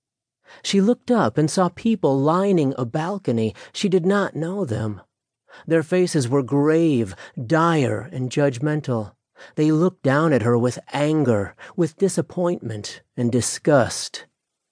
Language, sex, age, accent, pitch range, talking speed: English, male, 40-59, American, 125-165 Hz, 130 wpm